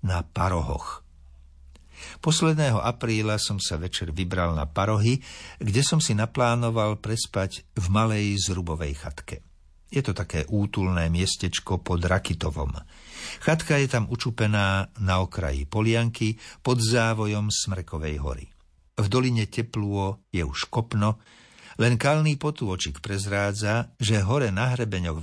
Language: Slovak